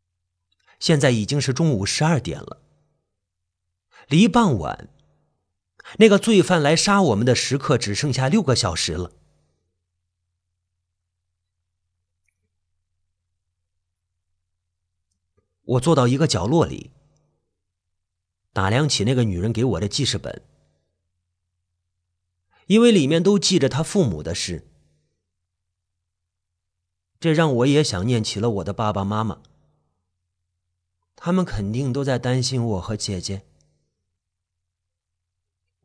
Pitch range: 90-130 Hz